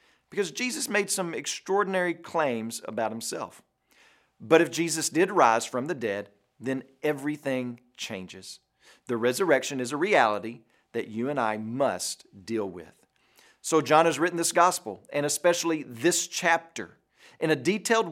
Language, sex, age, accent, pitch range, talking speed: English, male, 40-59, American, 125-175 Hz, 145 wpm